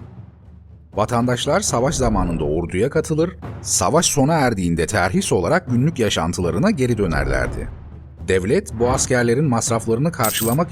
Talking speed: 105 wpm